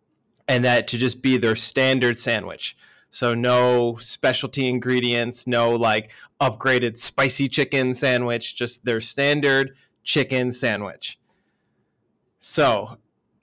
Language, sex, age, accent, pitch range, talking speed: English, male, 30-49, American, 115-135 Hz, 105 wpm